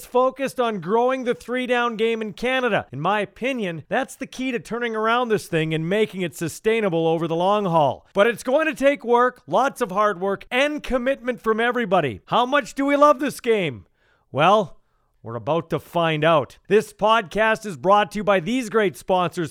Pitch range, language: 170-225 Hz, English